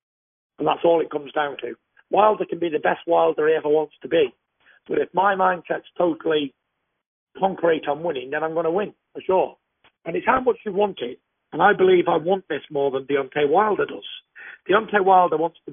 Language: English